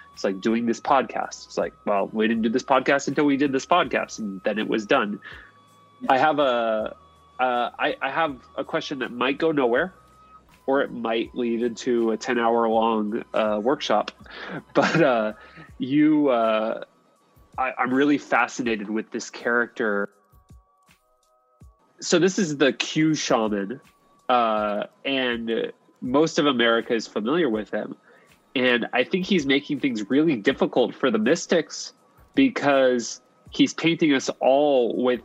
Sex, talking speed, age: male, 150 wpm, 20-39